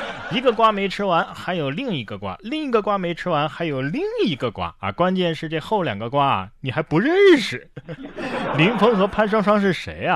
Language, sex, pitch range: Chinese, male, 115-185 Hz